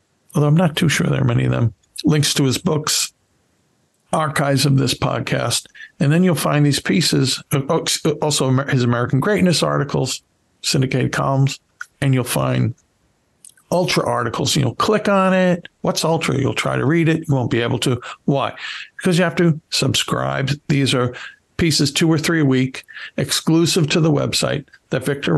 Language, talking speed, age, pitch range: English, 170 wpm, 60-79, 125-155 Hz